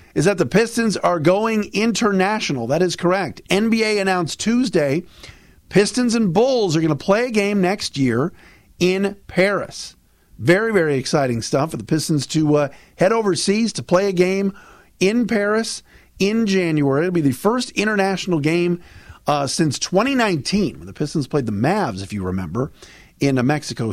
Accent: American